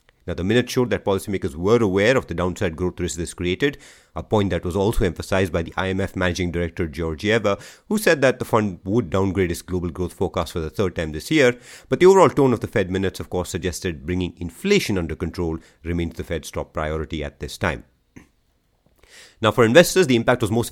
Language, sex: English, male